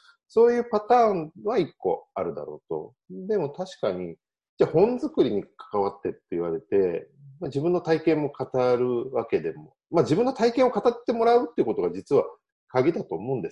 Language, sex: Japanese, male